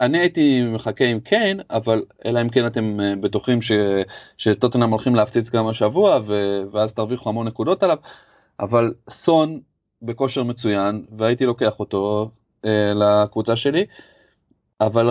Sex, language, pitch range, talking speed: male, Hebrew, 110-130 Hz, 130 wpm